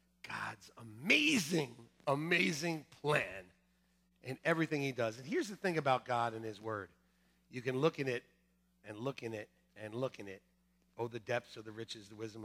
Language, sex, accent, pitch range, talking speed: English, male, American, 115-195 Hz, 185 wpm